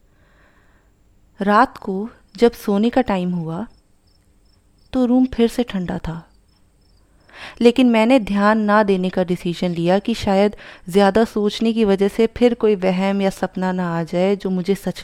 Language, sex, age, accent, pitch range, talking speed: Hindi, female, 30-49, native, 175-245 Hz, 155 wpm